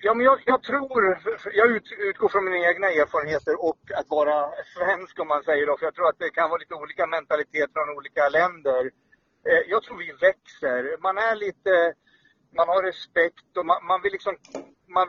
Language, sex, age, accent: Swedish, male, 50-69, native